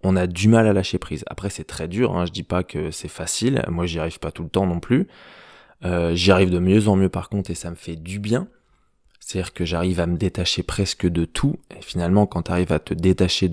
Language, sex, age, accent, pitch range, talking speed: French, male, 20-39, French, 85-105 Hz, 265 wpm